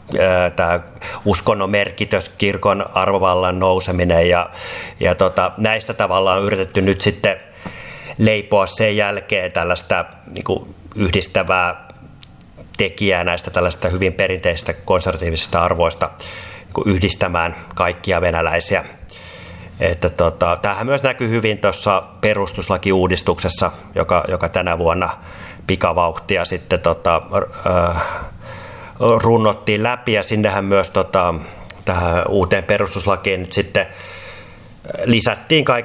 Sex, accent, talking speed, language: male, native, 100 wpm, Finnish